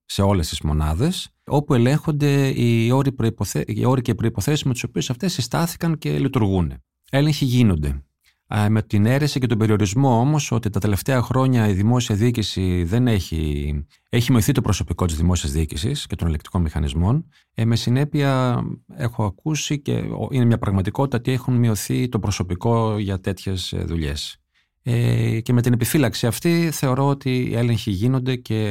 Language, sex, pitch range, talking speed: Greek, male, 90-130 Hz, 160 wpm